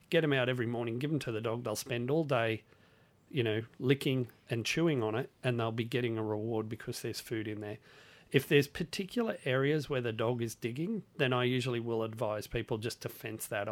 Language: English